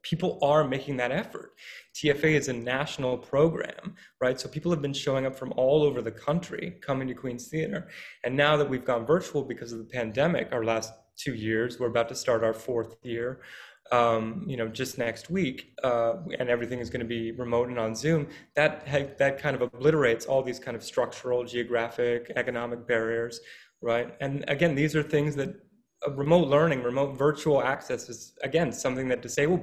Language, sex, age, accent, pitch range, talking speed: English, male, 20-39, American, 120-145 Hz, 190 wpm